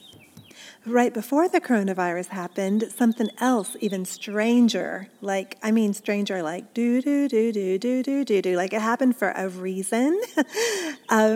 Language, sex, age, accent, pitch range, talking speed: English, female, 40-59, American, 200-250 Hz, 155 wpm